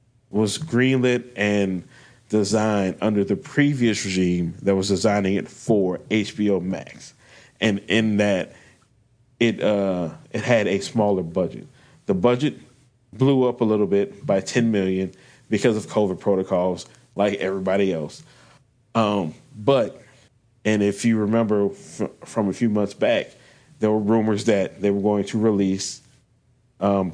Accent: American